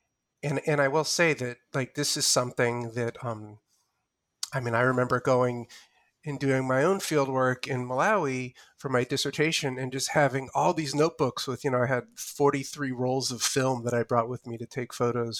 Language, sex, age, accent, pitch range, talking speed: English, male, 30-49, American, 125-145 Hz, 200 wpm